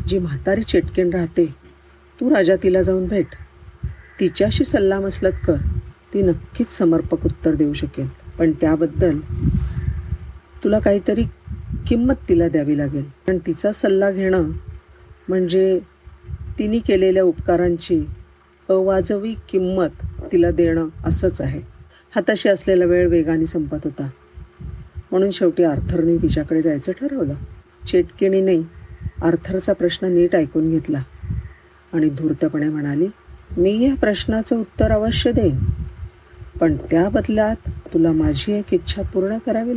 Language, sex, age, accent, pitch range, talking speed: Marathi, female, 50-69, native, 150-190 Hz, 110 wpm